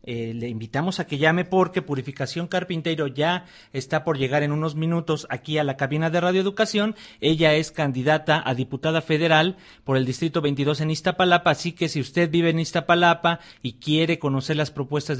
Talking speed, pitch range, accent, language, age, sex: 180 wpm, 135-170 Hz, Mexican, Spanish, 40-59, male